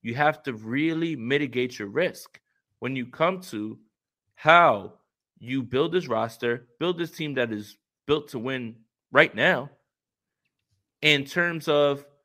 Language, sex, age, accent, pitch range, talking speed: English, male, 30-49, American, 115-155 Hz, 140 wpm